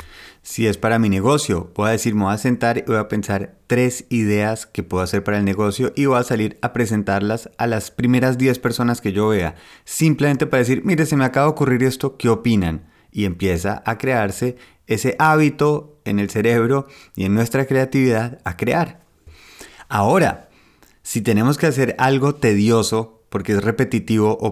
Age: 30-49